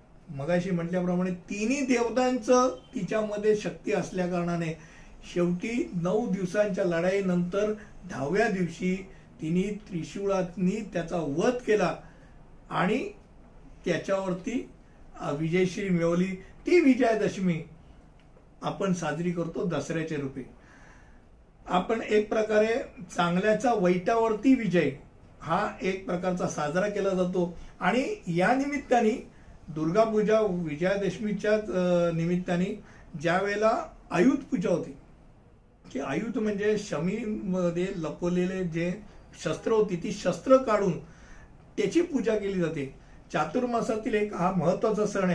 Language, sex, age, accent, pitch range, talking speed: Hindi, male, 60-79, native, 175-220 Hz, 90 wpm